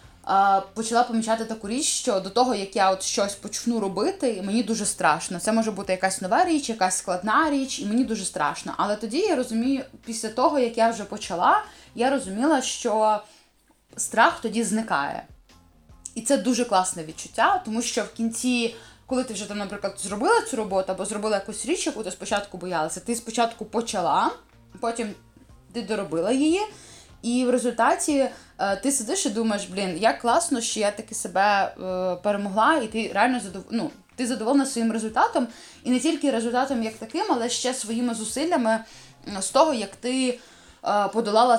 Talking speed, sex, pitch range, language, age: 165 wpm, female, 200-250 Hz, Ukrainian, 20-39